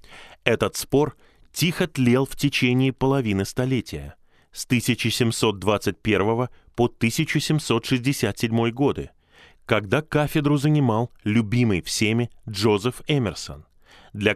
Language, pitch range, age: Russian, 100-130 Hz, 20-39